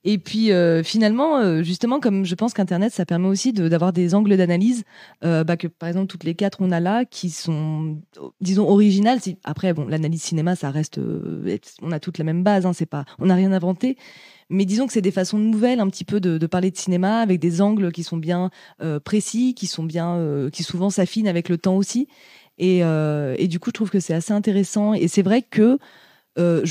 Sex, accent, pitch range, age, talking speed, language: female, French, 170-210 Hz, 20-39, 230 wpm, French